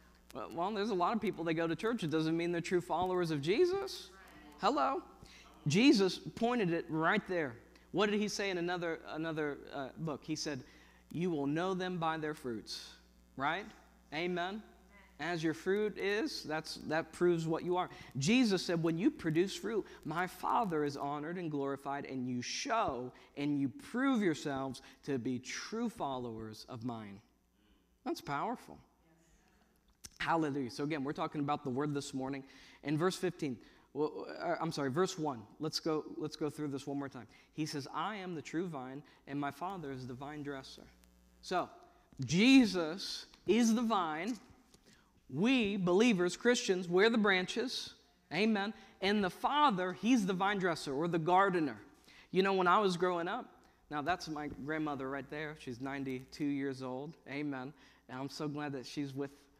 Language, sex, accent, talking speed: English, male, American, 170 wpm